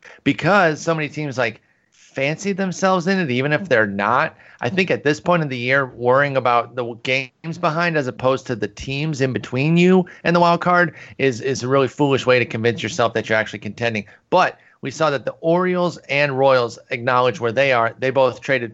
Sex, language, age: male, English, 30-49